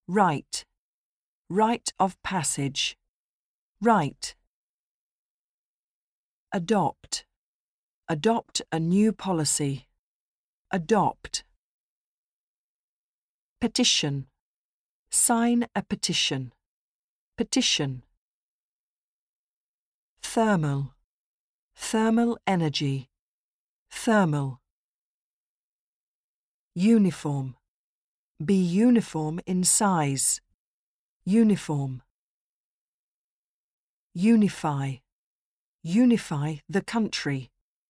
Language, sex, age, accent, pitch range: Japanese, female, 50-69, British, 140-215 Hz